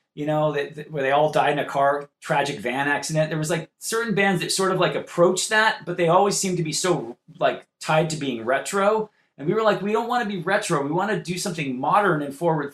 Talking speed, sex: 260 wpm, male